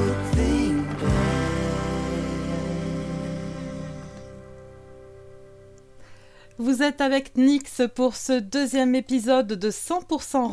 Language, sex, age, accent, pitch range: French, female, 30-49, French, 205-280 Hz